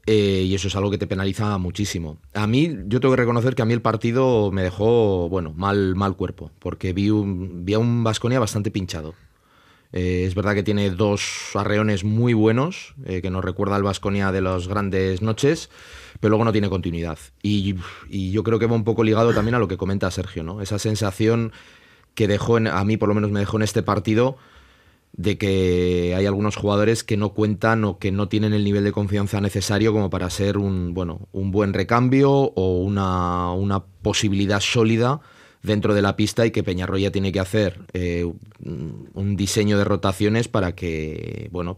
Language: Spanish